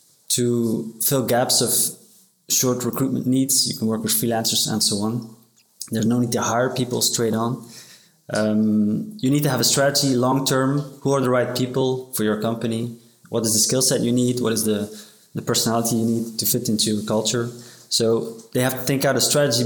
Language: English